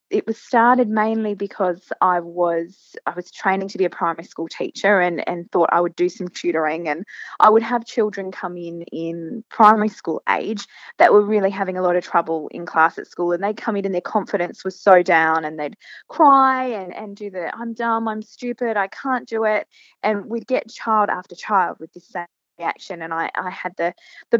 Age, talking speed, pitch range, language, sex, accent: 20-39, 215 wpm, 175-220 Hz, English, female, Australian